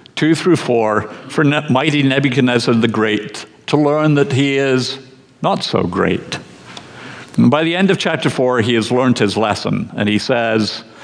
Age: 50-69